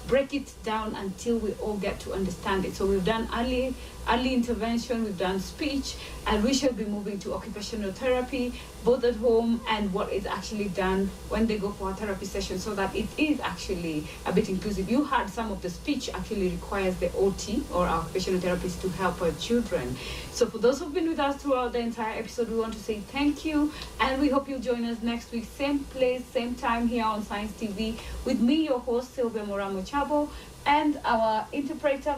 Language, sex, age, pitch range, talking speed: English, female, 30-49, 195-255 Hz, 205 wpm